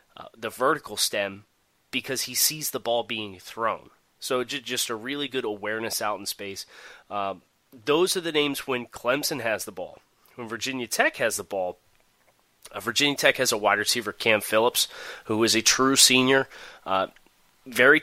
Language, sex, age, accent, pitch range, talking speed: English, male, 30-49, American, 105-135 Hz, 175 wpm